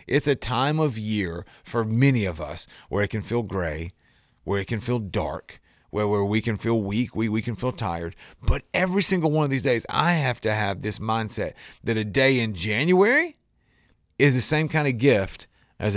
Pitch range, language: 105-135 Hz, English